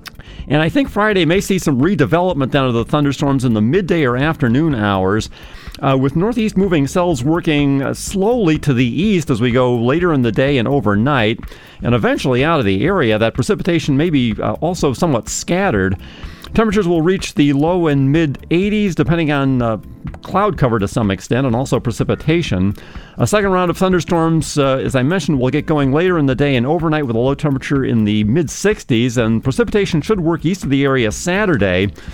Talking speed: 190 wpm